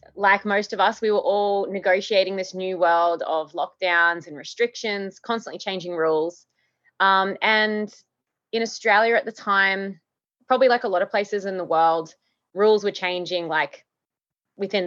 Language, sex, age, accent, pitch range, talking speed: English, female, 20-39, Australian, 175-210 Hz, 155 wpm